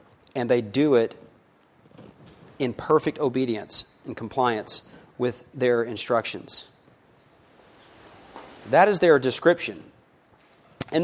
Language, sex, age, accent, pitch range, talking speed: English, male, 40-59, American, 125-155 Hz, 90 wpm